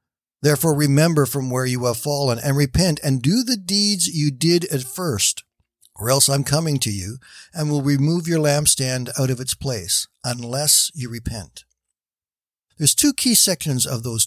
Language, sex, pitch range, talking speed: English, male, 130-165 Hz, 170 wpm